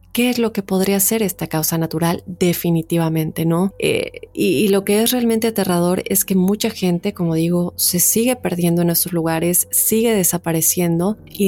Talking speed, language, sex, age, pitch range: 180 wpm, Spanish, female, 30-49, 175-205 Hz